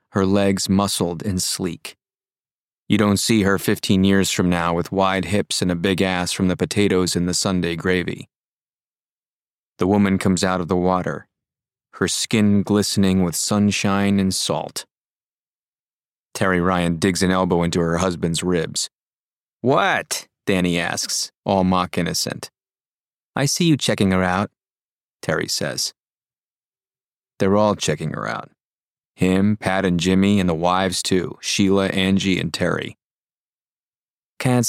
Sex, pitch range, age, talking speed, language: male, 90-110 Hz, 30-49, 140 wpm, English